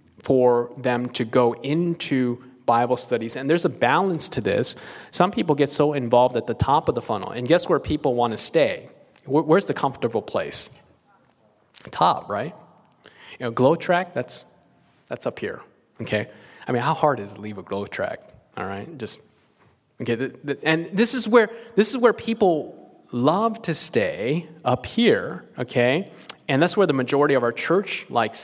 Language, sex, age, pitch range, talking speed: English, male, 30-49, 125-170 Hz, 185 wpm